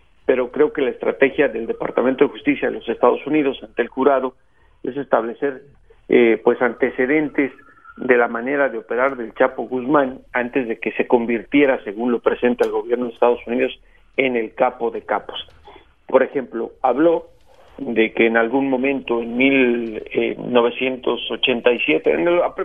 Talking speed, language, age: 150 wpm, Spanish, 50-69